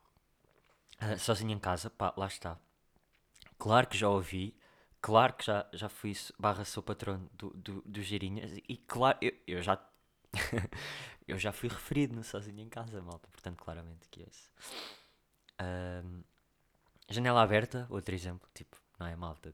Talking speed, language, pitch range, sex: 155 wpm, Portuguese, 95-125 Hz, male